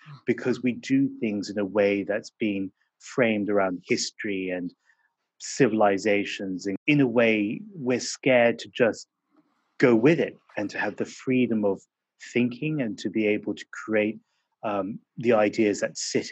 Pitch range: 100-130 Hz